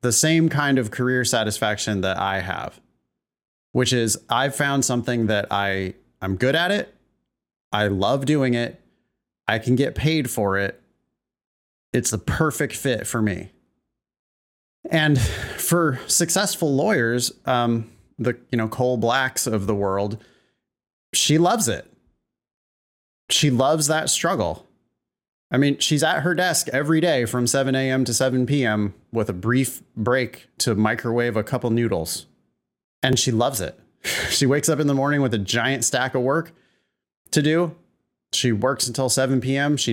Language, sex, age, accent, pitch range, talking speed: English, male, 30-49, American, 110-140 Hz, 155 wpm